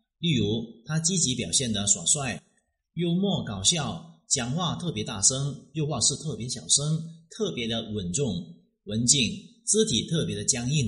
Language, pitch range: Chinese, 115-175 Hz